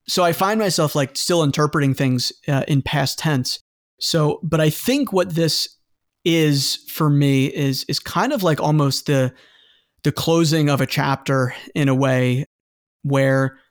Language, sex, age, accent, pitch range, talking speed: English, male, 30-49, American, 135-160 Hz, 160 wpm